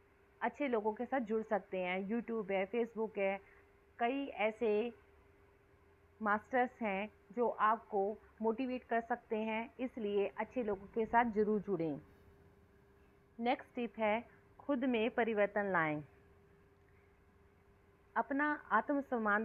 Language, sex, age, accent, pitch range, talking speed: Hindi, female, 30-49, native, 190-230 Hz, 115 wpm